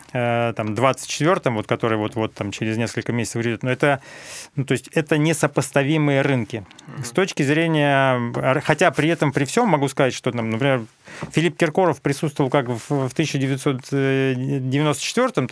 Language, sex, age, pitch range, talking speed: Russian, male, 30-49, 130-155 Hz, 140 wpm